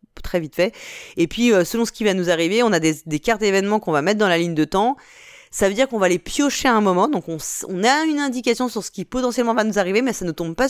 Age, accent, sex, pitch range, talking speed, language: 20-39, French, female, 165-235 Hz, 295 wpm, French